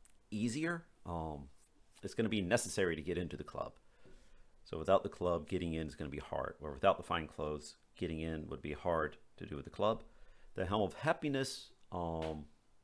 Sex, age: male, 40-59